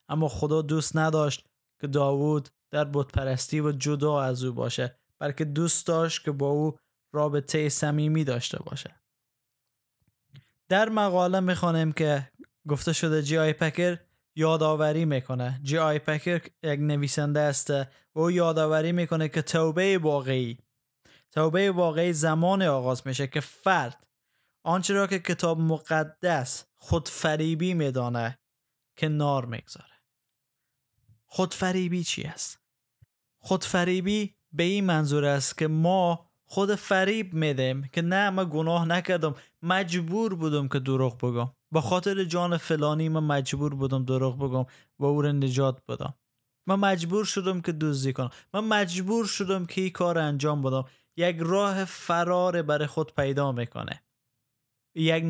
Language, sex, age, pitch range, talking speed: Persian, male, 20-39, 135-175 Hz, 130 wpm